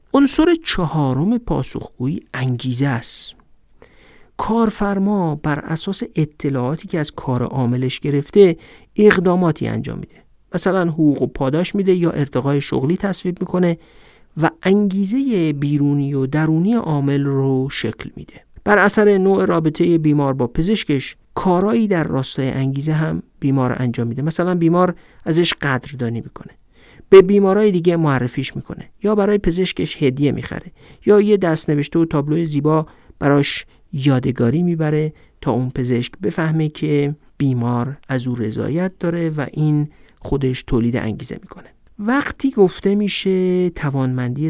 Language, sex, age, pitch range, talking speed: Persian, male, 50-69, 130-180 Hz, 130 wpm